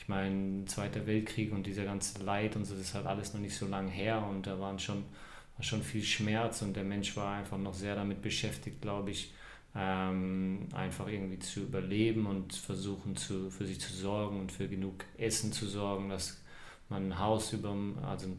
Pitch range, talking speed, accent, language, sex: 100-110 Hz, 195 wpm, German, German, male